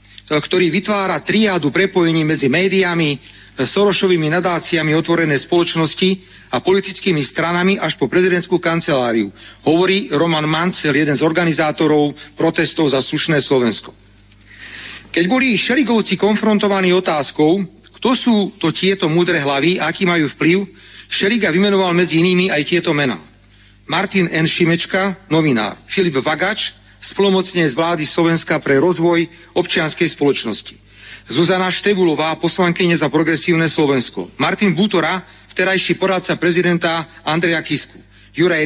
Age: 40-59